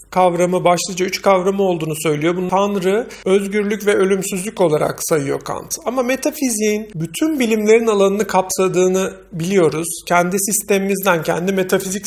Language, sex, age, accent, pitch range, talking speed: Turkish, male, 40-59, native, 180-215 Hz, 125 wpm